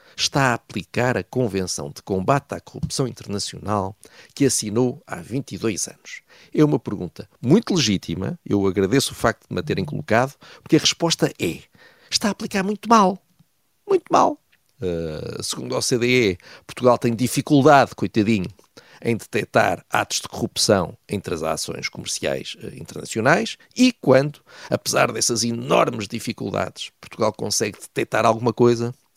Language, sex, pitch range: Portuguese, male, 100-140 Hz